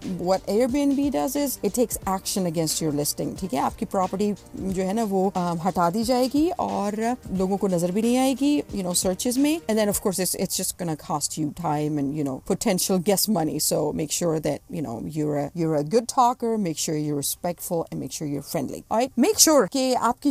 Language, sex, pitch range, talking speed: English, female, 165-225 Hz, 215 wpm